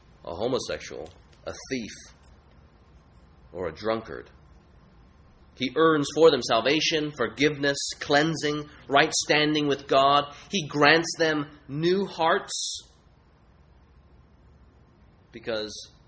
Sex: male